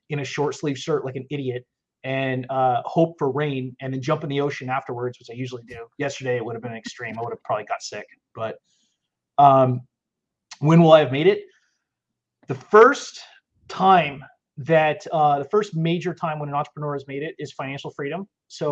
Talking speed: 200 wpm